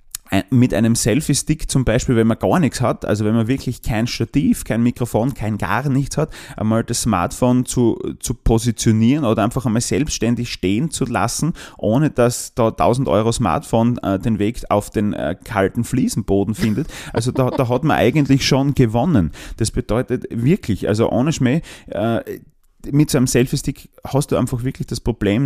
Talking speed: 175 wpm